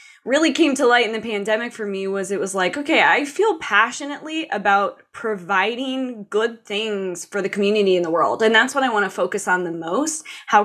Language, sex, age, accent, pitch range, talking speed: English, female, 20-39, American, 205-280 Hz, 215 wpm